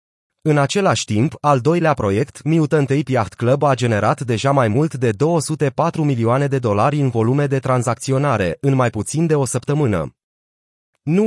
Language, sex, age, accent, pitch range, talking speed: Romanian, male, 30-49, native, 115-150 Hz, 165 wpm